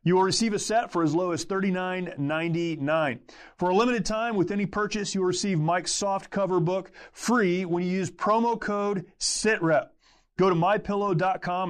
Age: 30-49